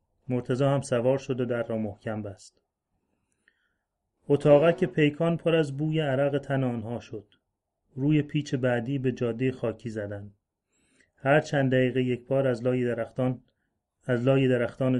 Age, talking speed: 30-49, 150 wpm